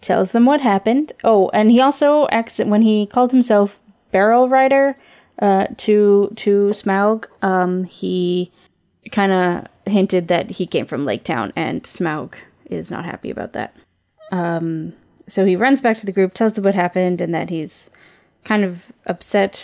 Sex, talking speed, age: female, 170 wpm, 10-29